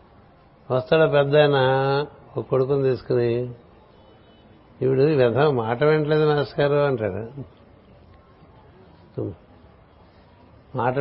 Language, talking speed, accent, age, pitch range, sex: Telugu, 65 wpm, native, 60-79, 110-140 Hz, male